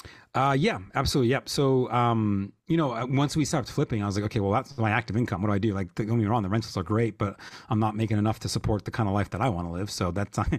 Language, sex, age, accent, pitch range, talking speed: English, male, 30-49, American, 105-125 Hz, 295 wpm